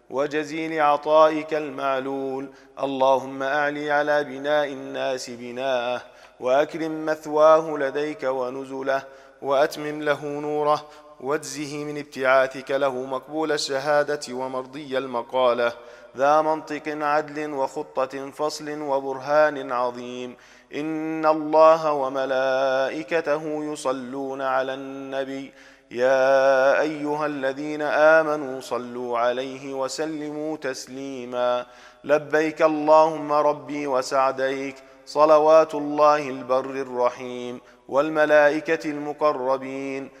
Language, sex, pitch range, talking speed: English, male, 130-150 Hz, 80 wpm